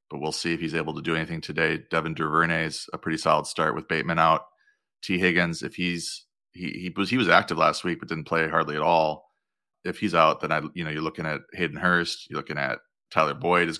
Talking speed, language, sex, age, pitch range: 245 wpm, English, male, 30-49, 80-95 Hz